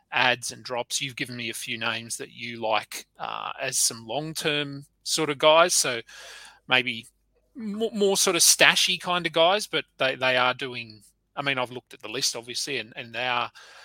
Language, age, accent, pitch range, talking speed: English, 30-49, Australian, 120-170 Hz, 200 wpm